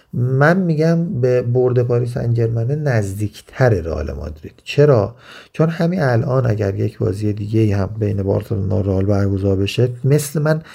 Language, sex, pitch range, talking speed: Persian, male, 110-135 Hz, 150 wpm